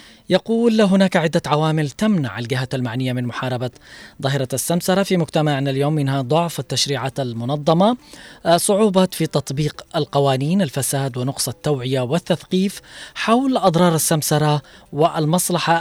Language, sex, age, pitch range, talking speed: Arabic, female, 20-39, 135-175 Hz, 115 wpm